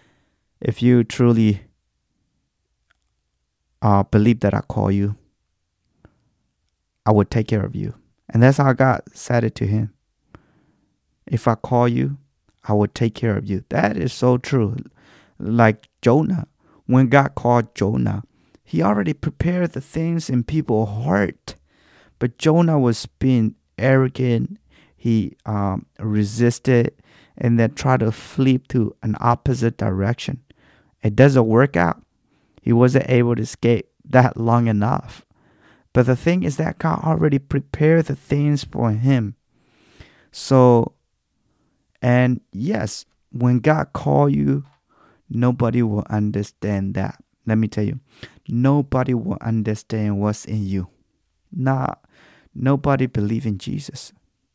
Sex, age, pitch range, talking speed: male, 30-49, 105-130 Hz, 130 wpm